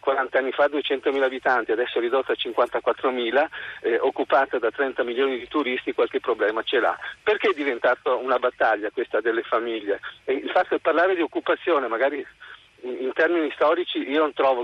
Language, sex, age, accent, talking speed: Italian, male, 50-69, native, 175 wpm